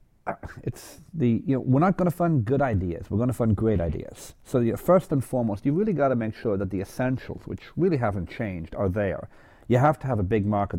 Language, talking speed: English, 245 wpm